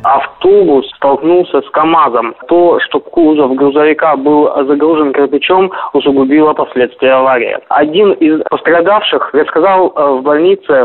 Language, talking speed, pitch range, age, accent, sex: Russian, 110 wpm, 145-225 Hz, 20-39, native, male